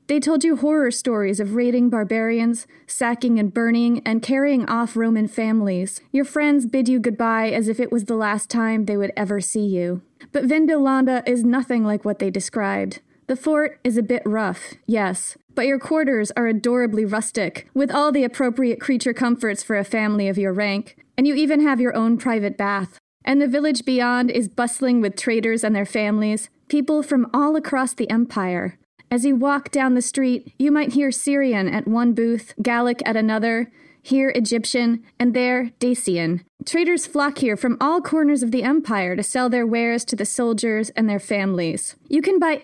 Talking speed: 190 wpm